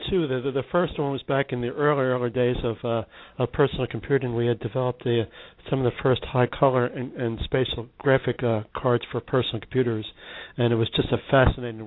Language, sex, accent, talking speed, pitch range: English, male, American, 210 wpm, 115-135 Hz